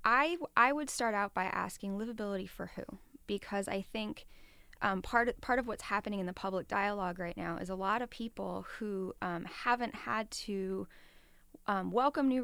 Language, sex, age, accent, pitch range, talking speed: English, female, 20-39, American, 190-240 Hz, 185 wpm